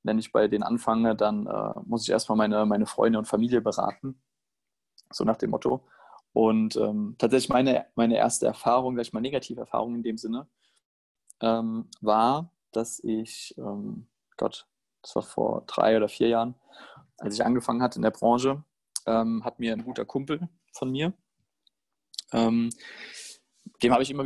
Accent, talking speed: German, 165 wpm